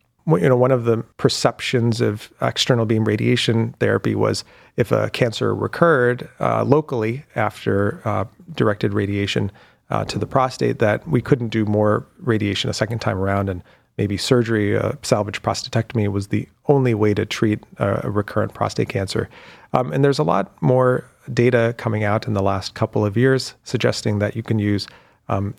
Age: 30-49